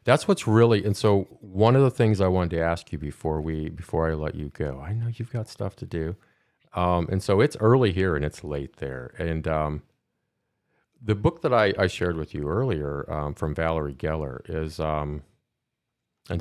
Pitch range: 75-110 Hz